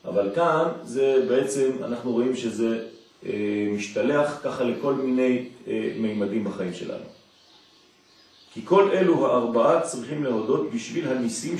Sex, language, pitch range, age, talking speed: male, French, 110-135 Hz, 40-59, 115 wpm